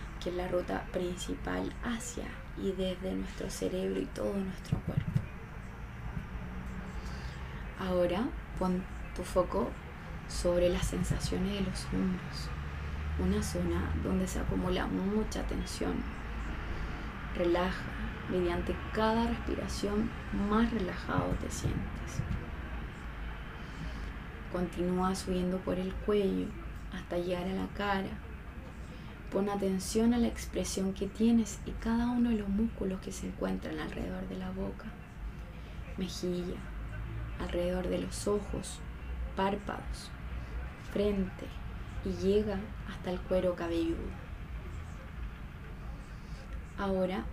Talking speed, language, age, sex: 105 wpm, Spanish, 20-39, female